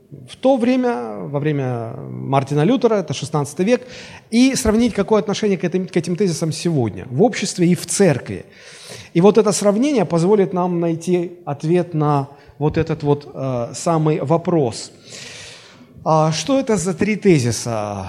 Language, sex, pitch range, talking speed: Russian, male, 150-205 Hz, 155 wpm